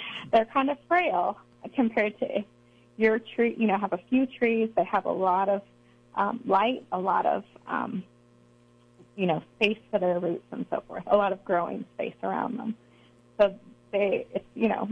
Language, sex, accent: English, female, American